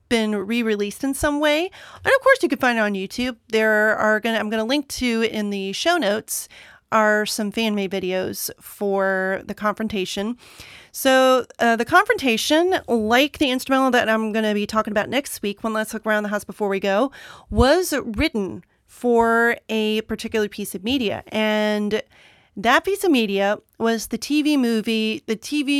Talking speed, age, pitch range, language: 175 wpm, 40-59, 205-250 Hz, English